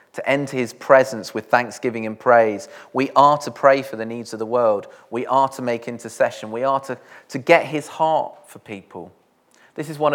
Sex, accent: male, British